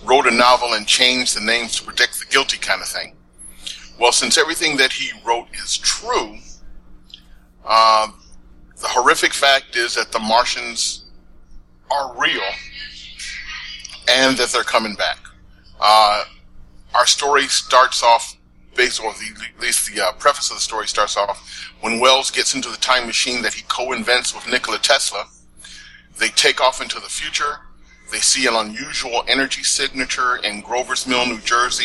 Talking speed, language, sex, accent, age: 160 wpm, English, male, American, 40-59